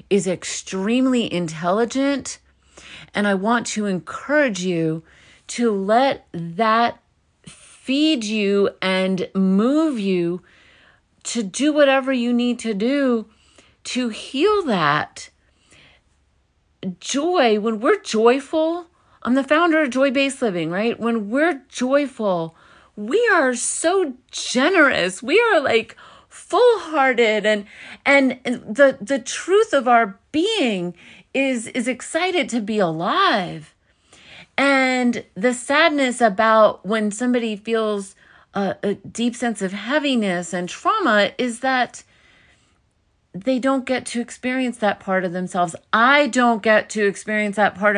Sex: female